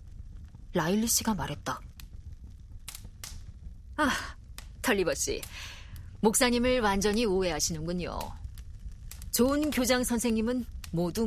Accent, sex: native, female